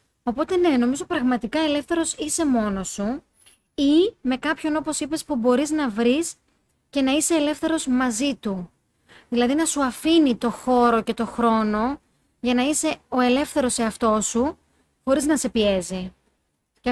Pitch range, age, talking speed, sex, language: 220-280 Hz, 30-49, 155 wpm, female, Greek